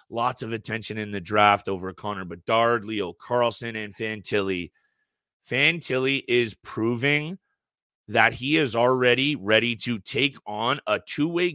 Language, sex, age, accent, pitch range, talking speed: English, male, 30-49, American, 105-135 Hz, 140 wpm